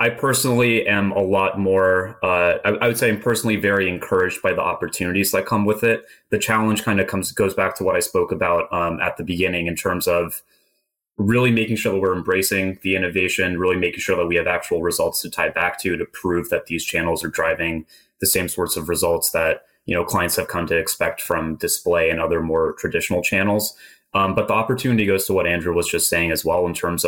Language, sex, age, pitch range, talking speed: English, male, 30-49, 90-105 Hz, 230 wpm